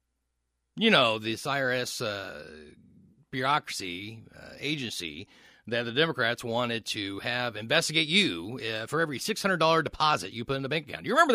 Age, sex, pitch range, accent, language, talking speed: 40-59, male, 115-170 Hz, American, English, 155 wpm